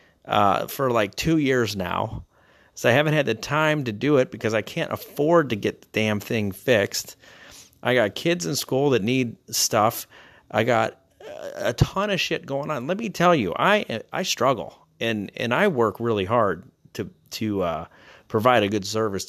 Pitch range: 100-135 Hz